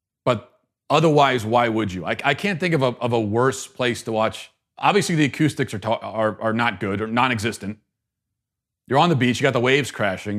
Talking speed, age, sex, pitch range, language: 190 wpm, 40-59, male, 110-140 Hz, English